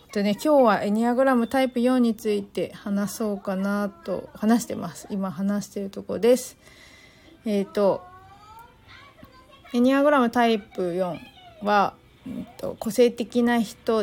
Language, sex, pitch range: Japanese, female, 200-270 Hz